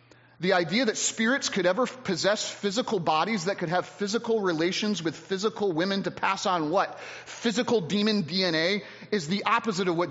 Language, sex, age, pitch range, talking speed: English, male, 30-49, 150-205 Hz, 170 wpm